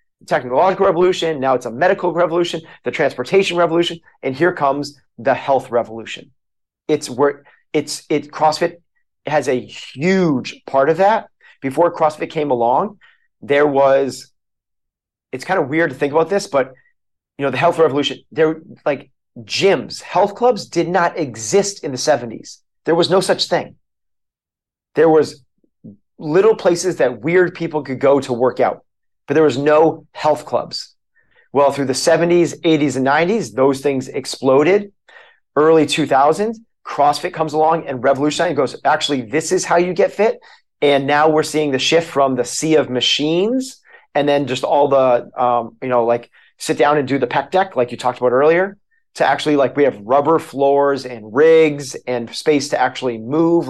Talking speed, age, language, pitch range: 170 wpm, 30-49, English, 135-170 Hz